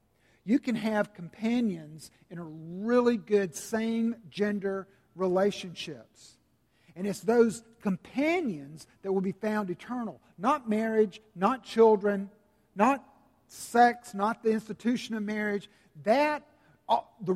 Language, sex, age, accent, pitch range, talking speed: English, male, 50-69, American, 170-225 Hz, 110 wpm